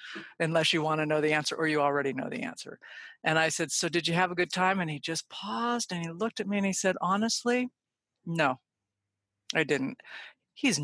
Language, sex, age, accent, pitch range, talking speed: English, female, 50-69, American, 145-180 Hz, 220 wpm